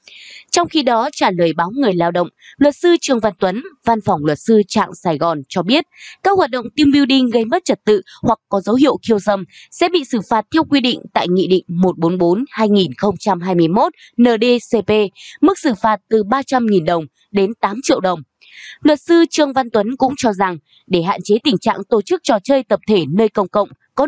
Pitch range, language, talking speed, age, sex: 195-280 Hz, Vietnamese, 205 wpm, 20-39, female